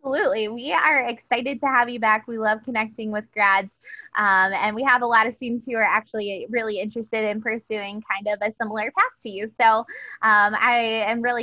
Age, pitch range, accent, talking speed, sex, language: 20-39, 200-245 Hz, American, 210 wpm, female, English